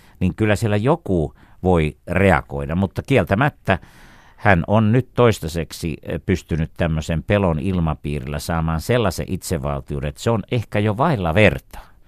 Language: Finnish